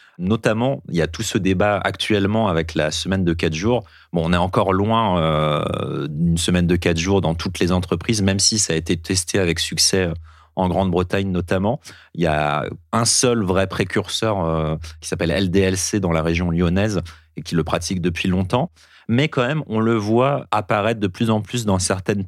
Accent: French